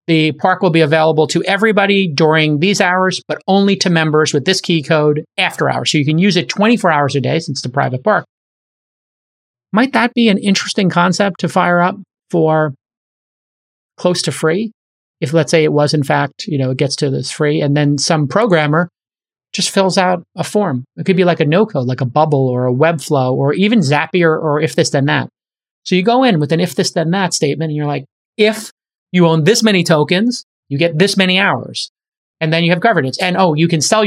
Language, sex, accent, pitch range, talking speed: English, male, American, 150-185 Hz, 220 wpm